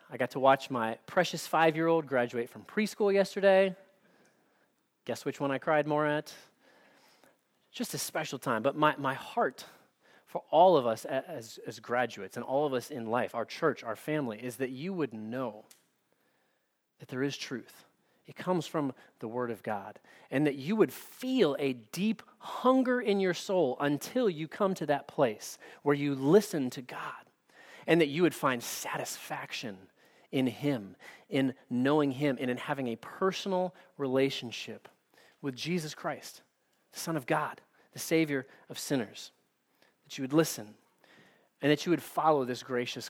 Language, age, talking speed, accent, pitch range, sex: English, 30-49, 165 wpm, American, 125-165 Hz, male